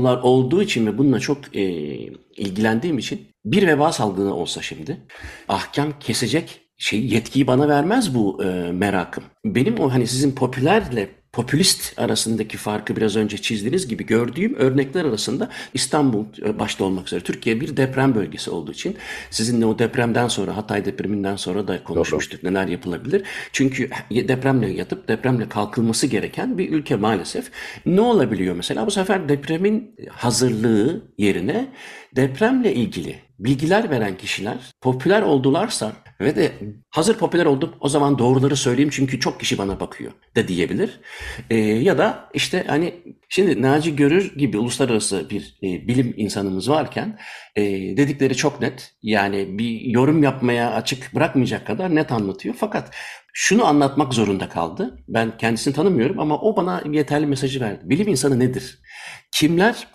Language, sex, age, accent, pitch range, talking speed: Turkish, male, 60-79, native, 110-145 Hz, 145 wpm